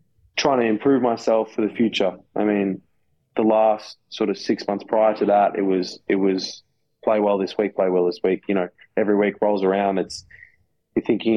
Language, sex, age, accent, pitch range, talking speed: English, male, 20-39, Australian, 95-110 Hz, 205 wpm